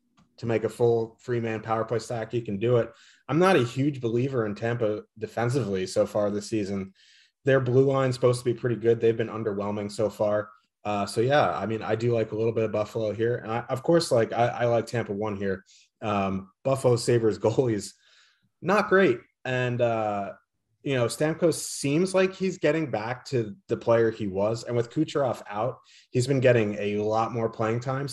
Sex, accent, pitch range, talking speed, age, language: male, American, 105-125 Hz, 205 wpm, 30-49, English